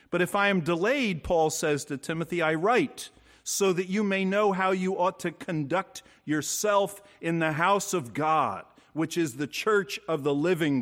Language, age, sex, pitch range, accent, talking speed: English, 50-69, male, 155-210 Hz, American, 190 wpm